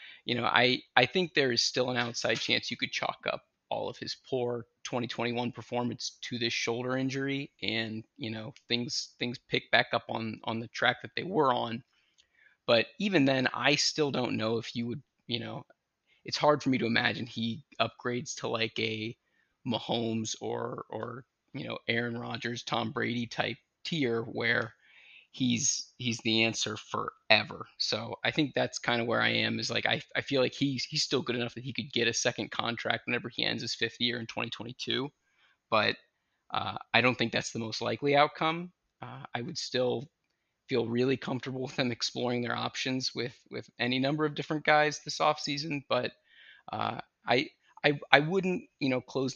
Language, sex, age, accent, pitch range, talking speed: English, male, 20-39, American, 115-135 Hz, 190 wpm